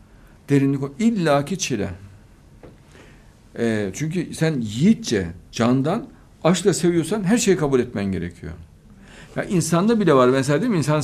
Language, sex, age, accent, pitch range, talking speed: Turkish, male, 60-79, native, 115-170 Hz, 130 wpm